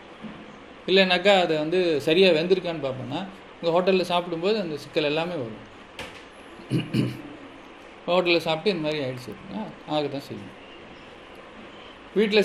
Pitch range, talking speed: 165-210 Hz, 105 wpm